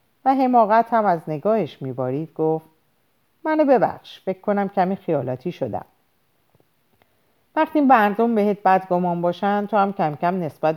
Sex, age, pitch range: female, 50-69, 155-220 Hz